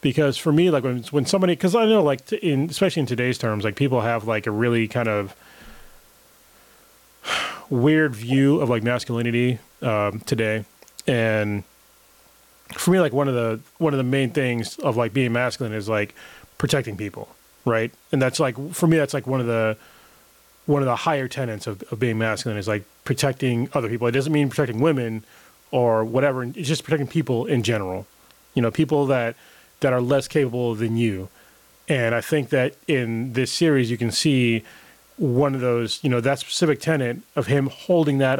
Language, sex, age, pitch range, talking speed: English, male, 30-49, 115-140 Hz, 190 wpm